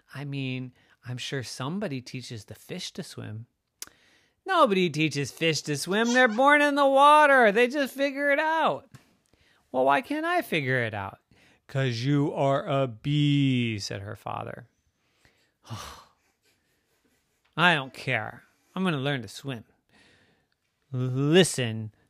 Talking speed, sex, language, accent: 135 wpm, male, English, American